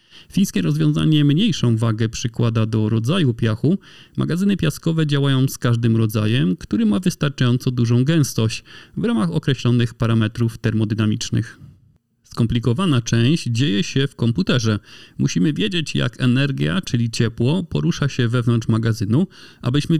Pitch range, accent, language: 115-145 Hz, native, Polish